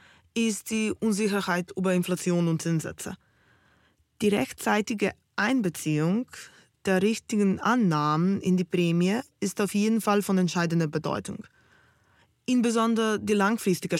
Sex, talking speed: female, 110 wpm